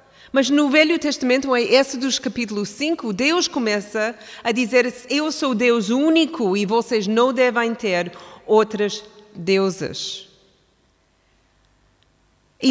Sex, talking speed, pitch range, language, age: female, 115 wpm, 210-275 Hz, Portuguese, 40-59